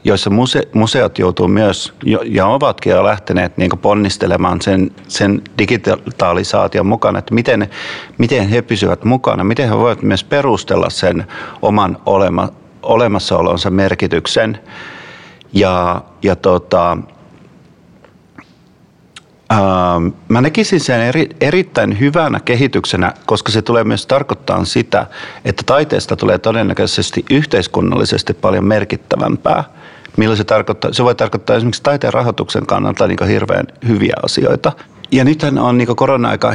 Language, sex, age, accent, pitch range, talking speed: Finnish, male, 50-69, native, 100-130 Hz, 115 wpm